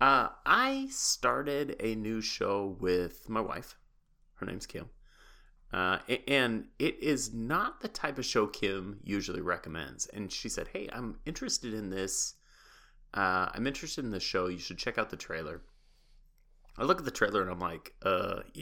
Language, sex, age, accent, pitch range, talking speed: English, male, 30-49, American, 90-120 Hz, 170 wpm